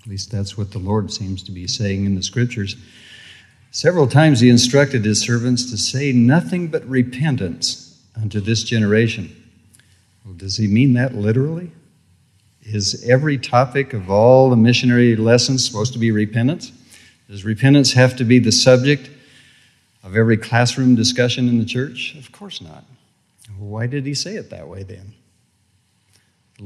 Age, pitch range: 50-69, 105-125 Hz